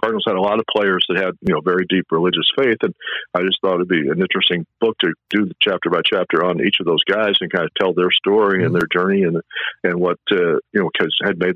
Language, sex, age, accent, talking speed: English, male, 50-69, American, 270 wpm